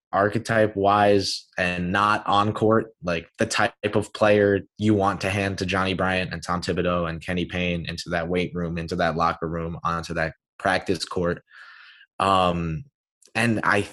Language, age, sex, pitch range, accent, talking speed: English, 20-39, male, 95-125 Hz, American, 170 wpm